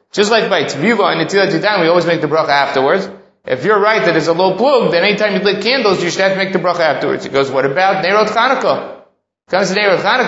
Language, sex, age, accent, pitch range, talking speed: English, male, 30-49, American, 160-200 Hz, 240 wpm